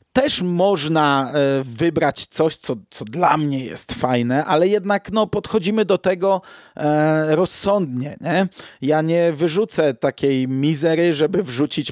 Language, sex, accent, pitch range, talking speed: Polish, male, native, 135-170 Hz, 125 wpm